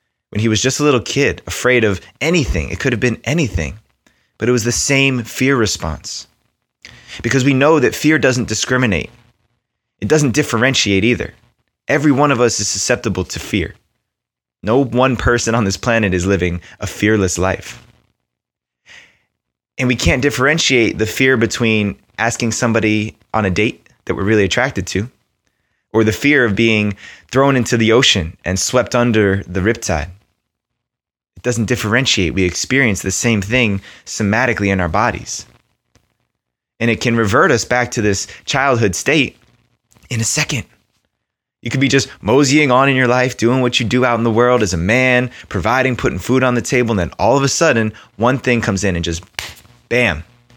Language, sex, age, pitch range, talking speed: English, male, 20-39, 100-125 Hz, 175 wpm